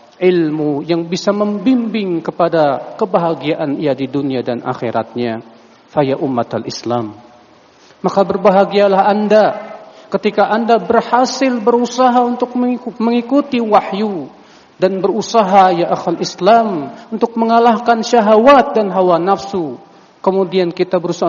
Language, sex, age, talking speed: Indonesian, male, 40-59, 105 wpm